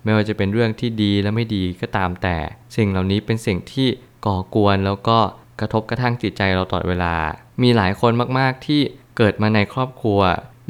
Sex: male